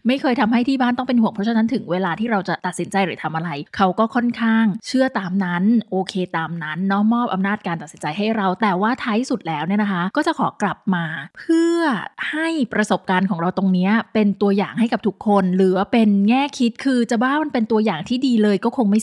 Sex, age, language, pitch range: female, 20-39, Thai, 190-250 Hz